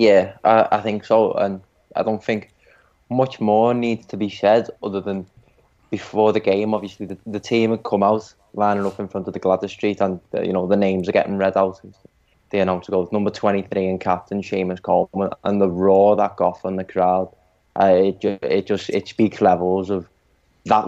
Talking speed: 205 wpm